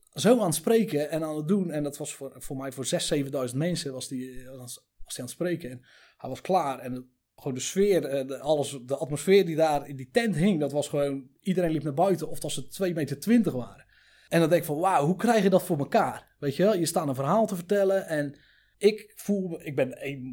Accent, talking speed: Dutch, 250 wpm